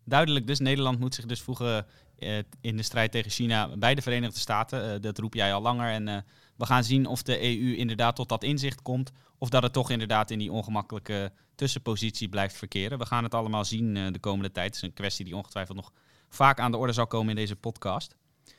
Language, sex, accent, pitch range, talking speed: Dutch, male, Dutch, 110-135 Hz, 220 wpm